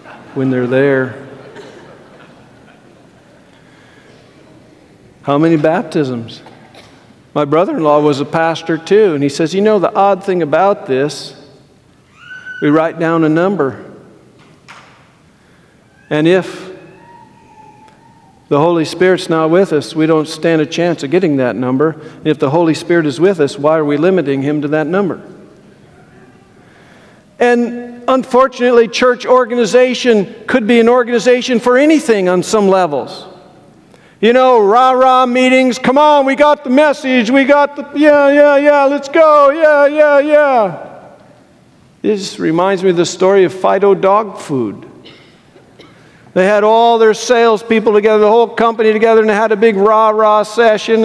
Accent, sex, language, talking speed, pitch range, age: American, male, English, 140 wpm, 160-245 Hz, 50-69